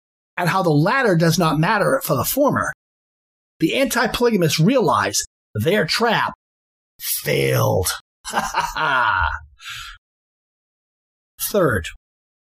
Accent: American